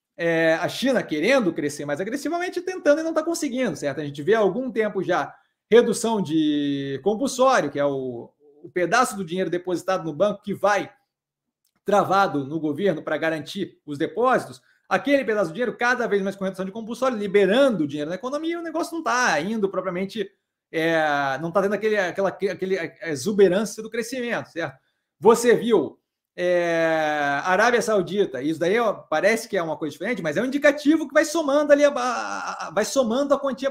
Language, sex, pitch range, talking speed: Portuguese, male, 165-260 Hz, 180 wpm